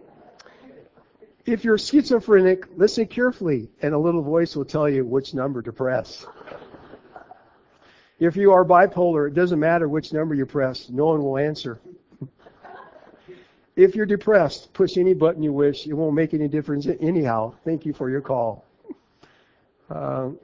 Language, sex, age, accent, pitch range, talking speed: English, male, 60-79, American, 145-180 Hz, 150 wpm